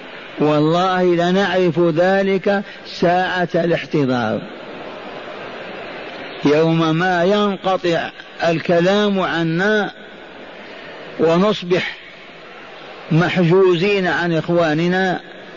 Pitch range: 155-185 Hz